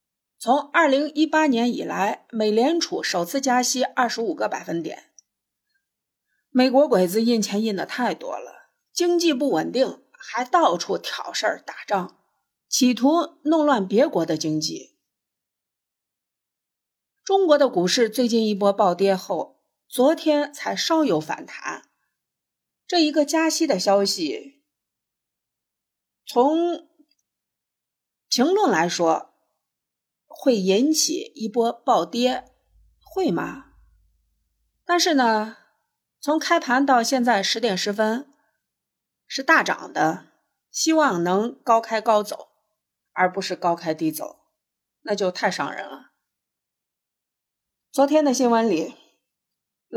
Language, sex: Chinese, female